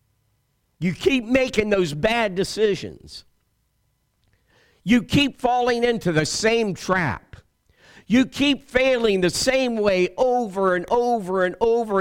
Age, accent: 50-69, American